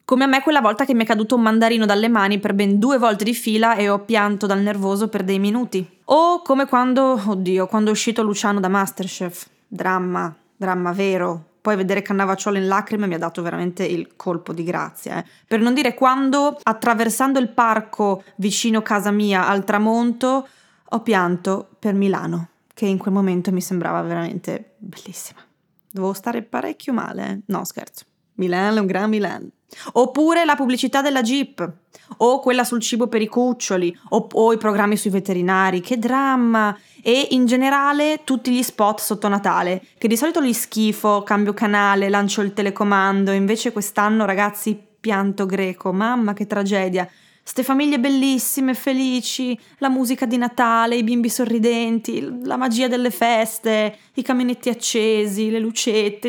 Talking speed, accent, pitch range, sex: 165 wpm, native, 195-245 Hz, female